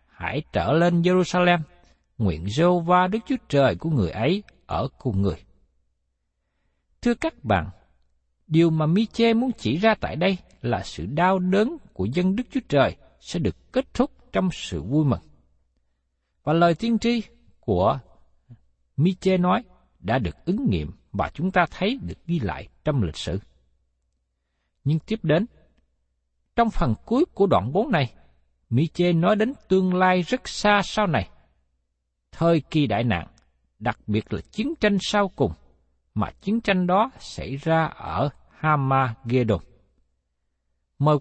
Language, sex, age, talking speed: Vietnamese, male, 60-79, 155 wpm